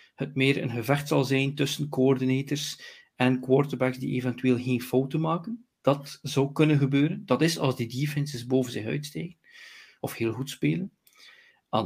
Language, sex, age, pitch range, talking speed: Dutch, male, 40-59, 120-145 Hz, 160 wpm